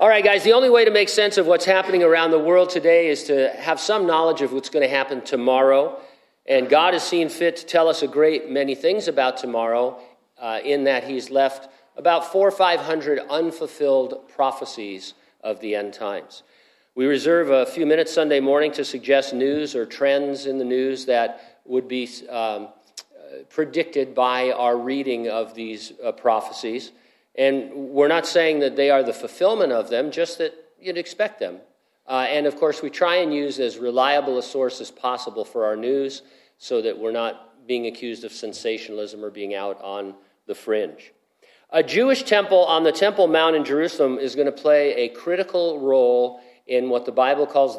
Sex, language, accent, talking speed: male, English, American, 190 wpm